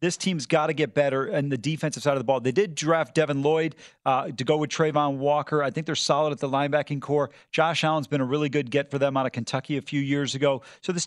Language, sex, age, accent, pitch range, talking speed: English, male, 40-59, American, 150-205 Hz, 270 wpm